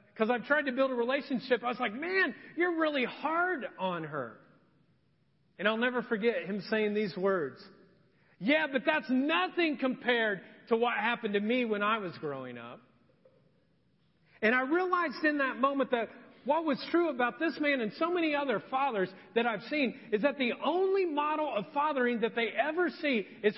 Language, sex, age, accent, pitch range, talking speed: English, male, 40-59, American, 205-270 Hz, 185 wpm